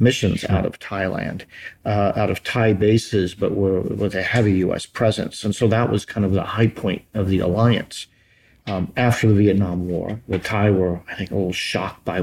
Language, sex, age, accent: Indonesian, male, 50-69, American